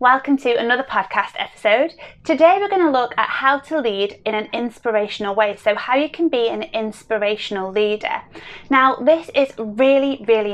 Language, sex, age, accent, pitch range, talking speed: English, female, 20-39, British, 210-270 Hz, 170 wpm